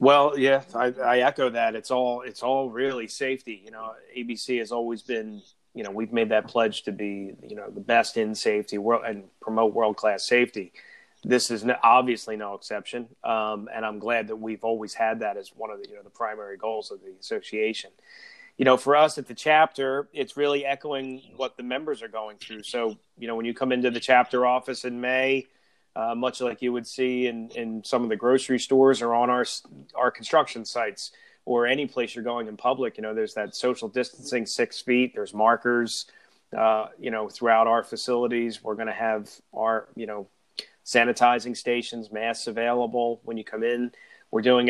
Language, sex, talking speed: English, male, 205 wpm